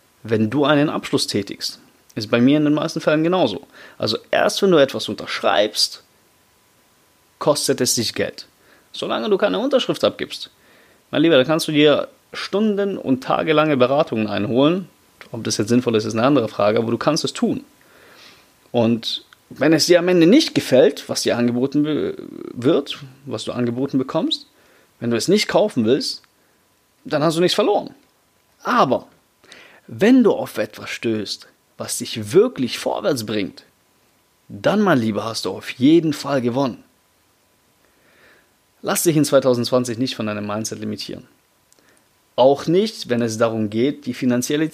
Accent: German